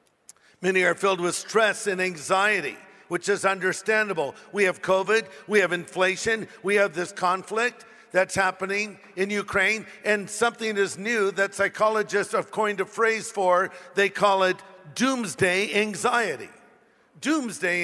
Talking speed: 140 wpm